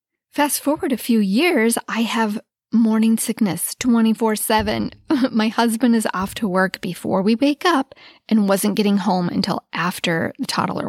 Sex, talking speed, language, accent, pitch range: female, 165 wpm, English, American, 195-240 Hz